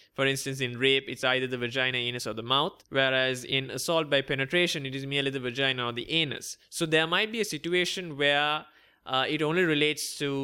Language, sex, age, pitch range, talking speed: English, male, 20-39, 135-160 Hz, 215 wpm